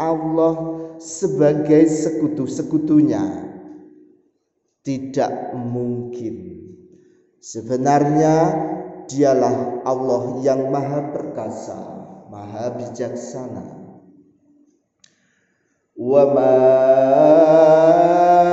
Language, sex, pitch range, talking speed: Indonesian, male, 145-180 Hz, 45 wpm